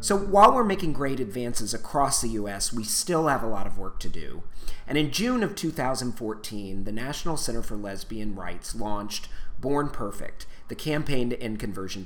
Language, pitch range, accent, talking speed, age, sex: English, 105-140 Hz, American, 185 wpm, 40-59, male